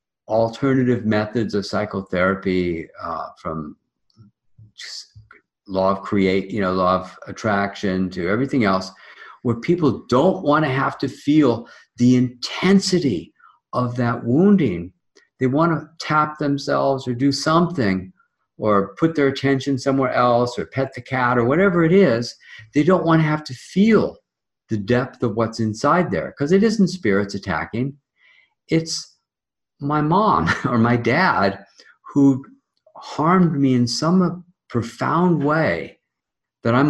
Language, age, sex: English, 50-69, male